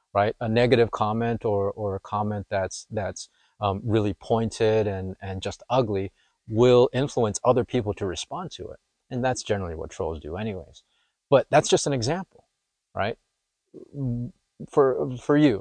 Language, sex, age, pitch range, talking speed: English, male, 30-49, 100-125 Hz, 160 wpm